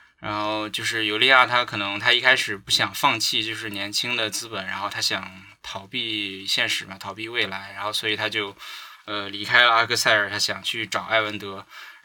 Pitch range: 100-115 Hz